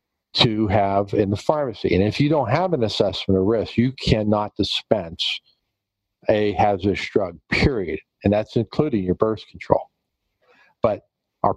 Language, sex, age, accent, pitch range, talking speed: English, male, 50-69, American, 100-125 Hz, 150 wpm